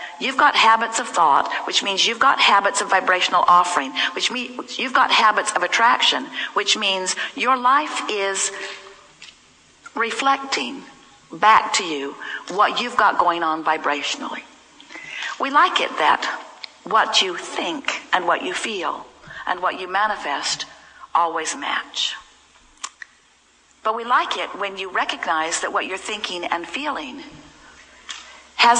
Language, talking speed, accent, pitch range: English, 140 wpm, American, 190-260 Hz